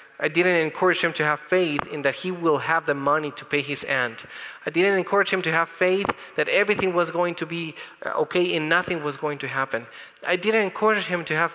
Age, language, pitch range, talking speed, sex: 30-49, English, 145-175 Hz, 230 wpm, male